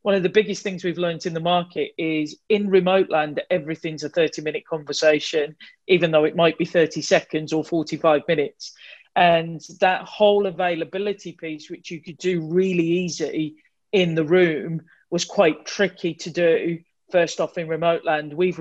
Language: English